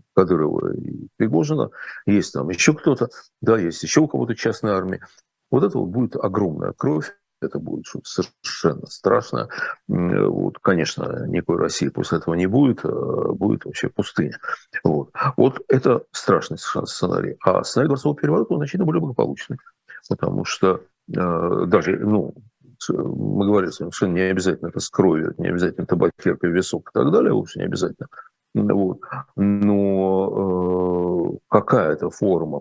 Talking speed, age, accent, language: 145 wpm, 40-59, native, Russian